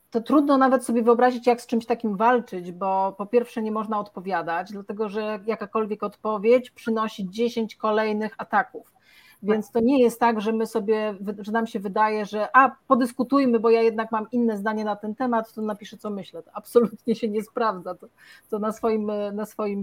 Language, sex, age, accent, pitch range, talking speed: Polish, female, 40-59, native, 190-225 Hz, 190 wpm